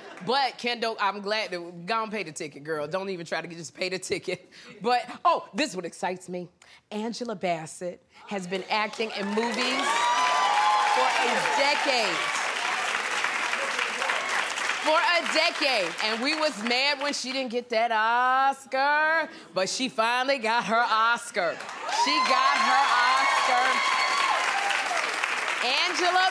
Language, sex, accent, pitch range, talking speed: English, female, American, 190-265 Hz, 135 wpm